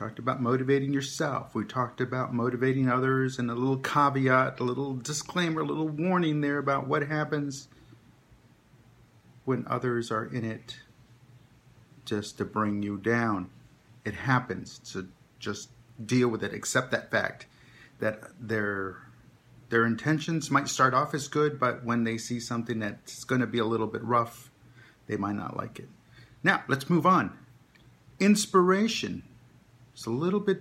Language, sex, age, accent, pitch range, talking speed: English, male, 50-69, American, 120-150 Hz, 155 wpm